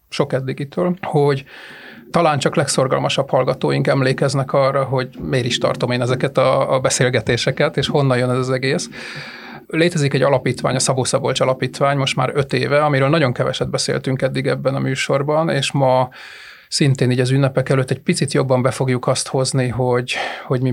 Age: 30-49